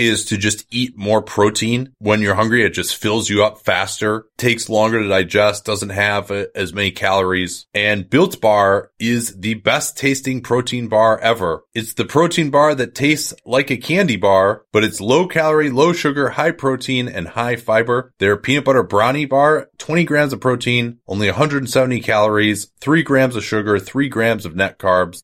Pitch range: 105-135 Hz